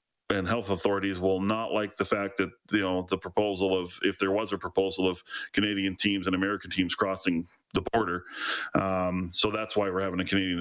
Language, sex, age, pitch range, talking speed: English, male, 40-59, 95-110 Hz, 205 wpm